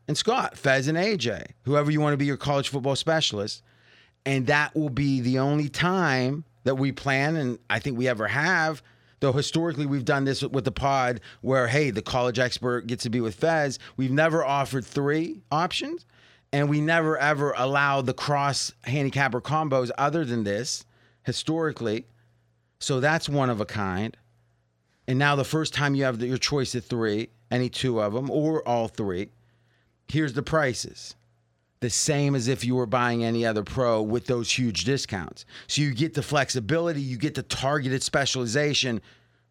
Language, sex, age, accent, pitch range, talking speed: English, male, 30-49, American, 120-150 Hz, 180 wpm